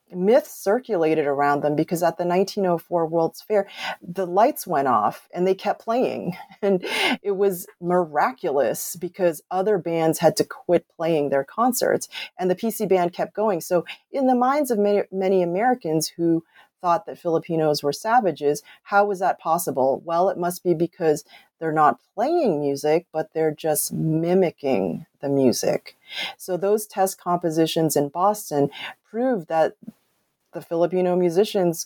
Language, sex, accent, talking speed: English, female, American, 155 wpm